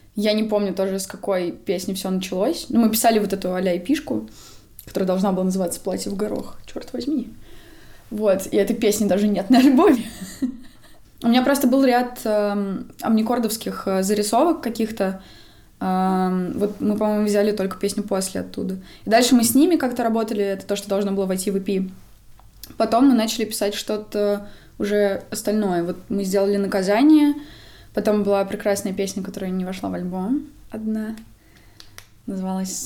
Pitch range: 195-225 Hz